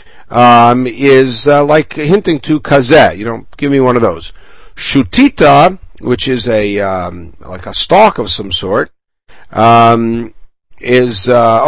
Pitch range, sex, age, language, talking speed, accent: 110-150 Hz, male, 50-69, English, 145 wpm, American